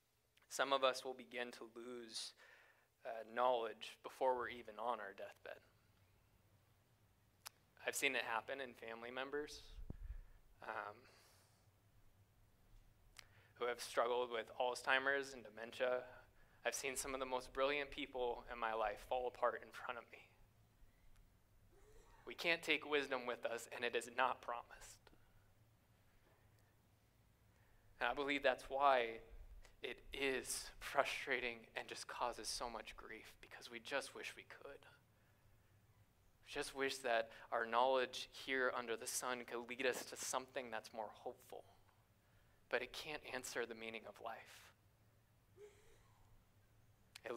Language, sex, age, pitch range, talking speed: English, male, 20-39, 105-125 Hz, 135 wpm